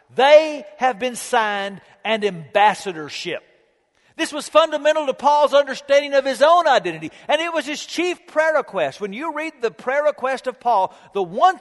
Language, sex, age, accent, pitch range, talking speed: English, male, 50-69, American, 200-290 Hz, 170 wpm